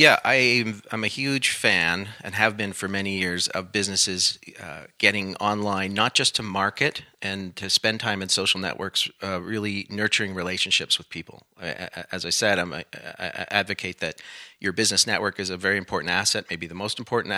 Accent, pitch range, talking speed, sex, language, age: American, 95-110 Hz, 170 wpm, male, English, 40-59